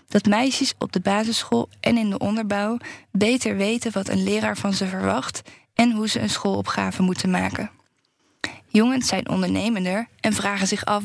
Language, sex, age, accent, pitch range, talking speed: Dutch, female, 10-29, Dutch, 195-230 Hz, 170 wpm